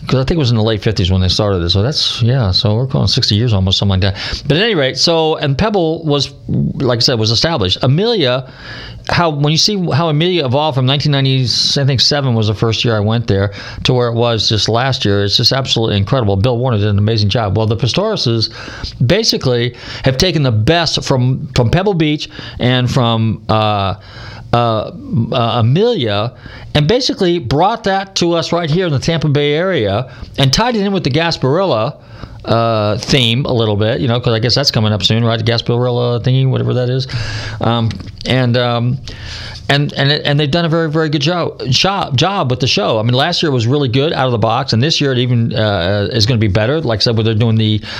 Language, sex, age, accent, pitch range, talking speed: English, male, 40-59, American, 110-145 Hz, 230 wpm